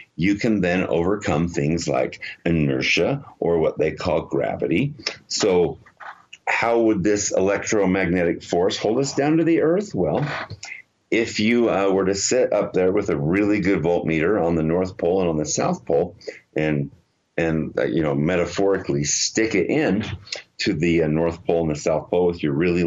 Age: 50-69